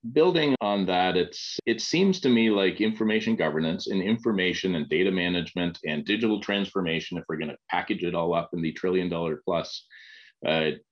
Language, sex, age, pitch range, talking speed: English, male, 30-49, 90-115 Hz, 170 wpm